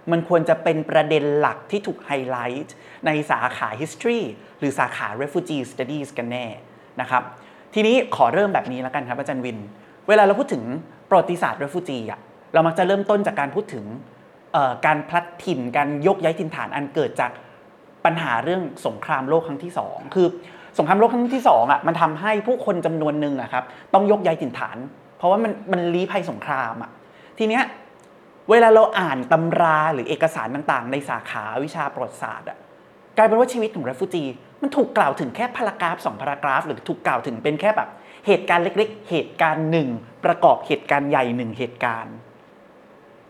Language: Thai